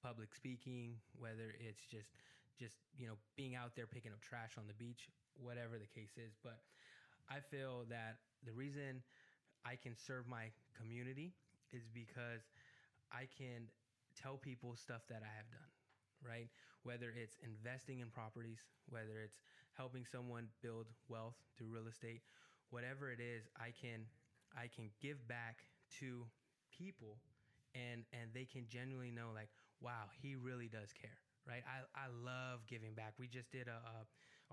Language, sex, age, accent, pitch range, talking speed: English, male, 10-29, American, 115-130 Hz, 160 wpm